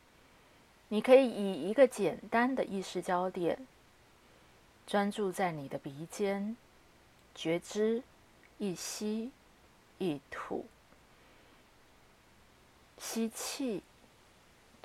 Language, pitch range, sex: Chinese, 165-240 Hz, female